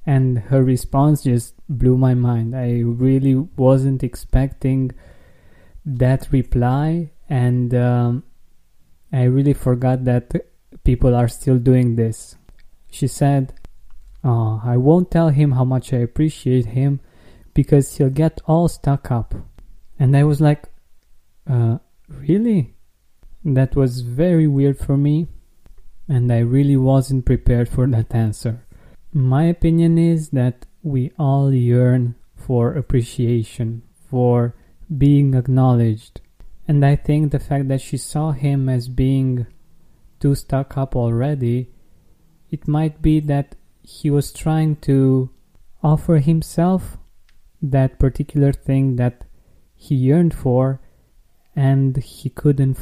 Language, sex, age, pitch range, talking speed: English, male, 20-39, 120-140 Hz, 125 wpm